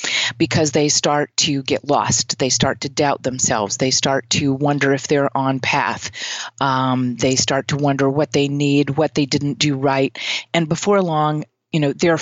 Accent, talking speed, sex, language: American, 185 wpm, female, English